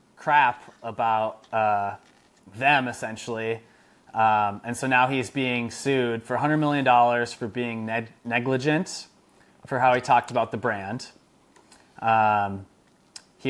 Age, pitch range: 20-39, 115-130 Hz